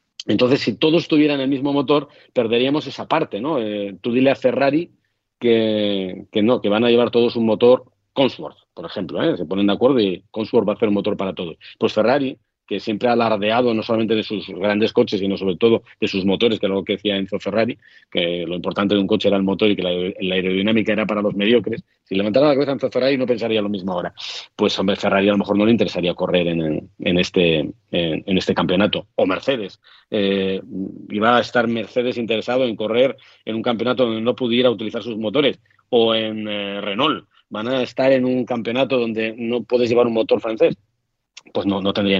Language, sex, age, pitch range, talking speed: Spanish, male, 40-59, 100-120 Hz, 215 wpm